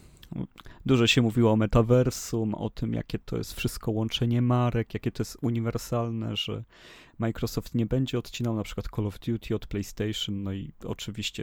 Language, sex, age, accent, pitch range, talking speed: Polish, male, 30-49, native, 110-120 Hz, 165 wpm